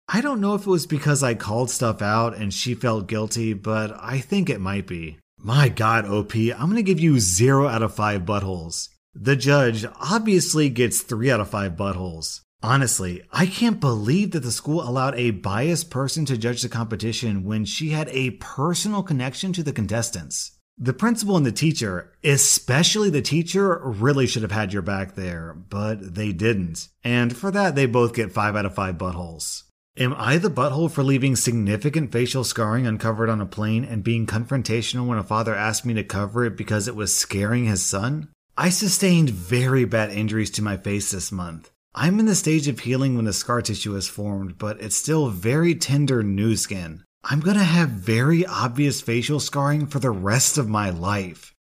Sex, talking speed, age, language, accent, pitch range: male, 195 wpm, 30-49, English, American, 105-140 Hz